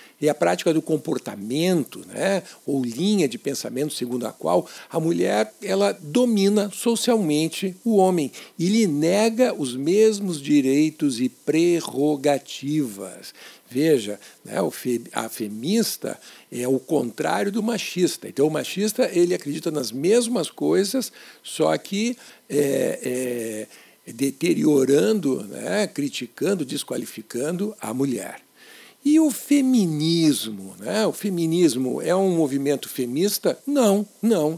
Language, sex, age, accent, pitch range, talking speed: Portuguese, male, 60-79, Brazilian, 135-215 Hz, 110 wpm